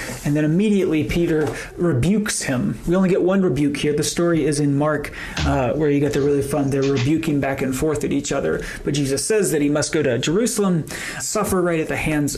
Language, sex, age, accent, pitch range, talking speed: English, male, 30-49, American, 140-180 Hz, 225 wpm